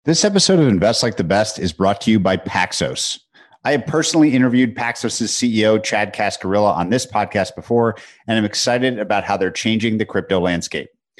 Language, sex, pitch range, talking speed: English, male, 100-125 Hz, 190 wpm